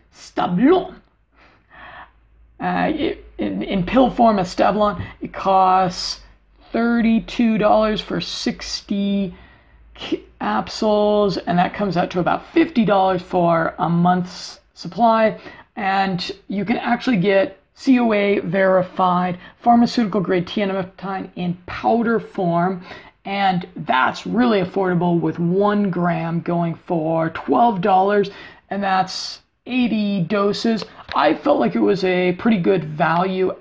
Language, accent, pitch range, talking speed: English, American, 180-210 Hz, 120 wpm